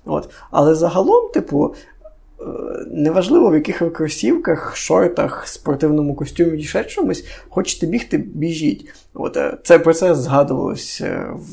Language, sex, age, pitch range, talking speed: Ukrainian, male, 20-39, 140-170 Hz, 125 wpm